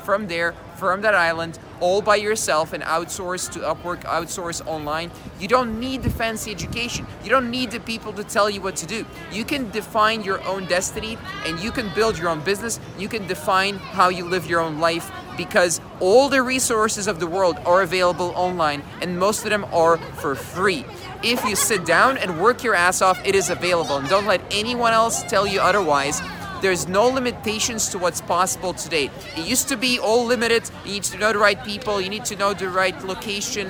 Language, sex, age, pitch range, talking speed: English, male, 20-39, 175-215 Hz, 210 wpm